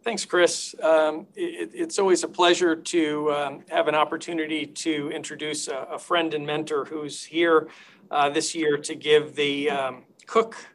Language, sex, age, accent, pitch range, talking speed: English, male, 50-69, American, 150-175 Hz, 165 wpm